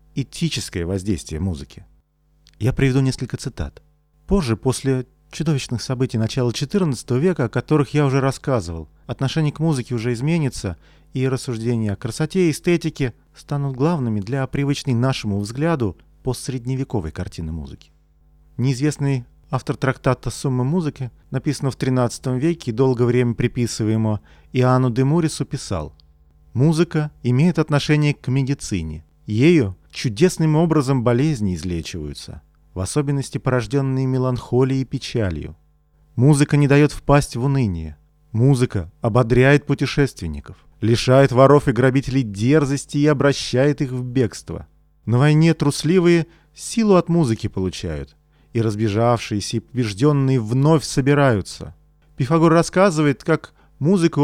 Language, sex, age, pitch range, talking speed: Russian, male, 40-59, 110-145 Hz, 120 wpm